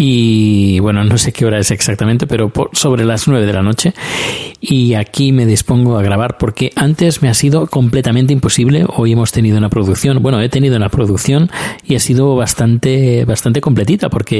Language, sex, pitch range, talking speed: Spanish, male, 105-130 Hz, 190 wpm